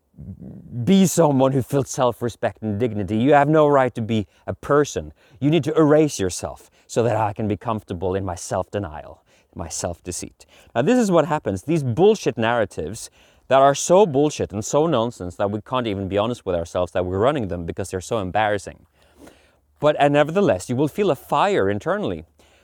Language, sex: English, male